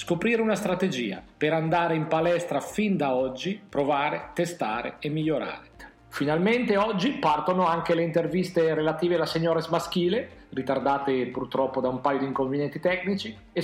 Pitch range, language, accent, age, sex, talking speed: 150-180 Hz, Italian, native, 40-59, male, 145 wpm